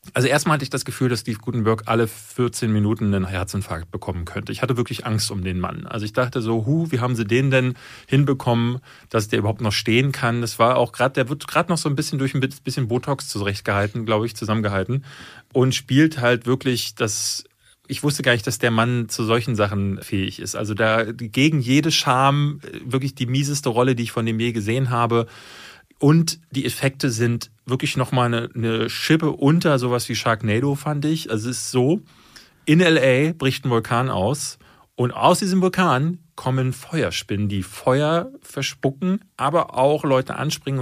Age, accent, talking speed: 30-49, German, 190 wpm